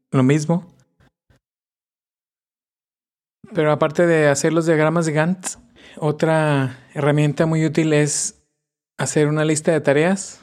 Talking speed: 115 wpm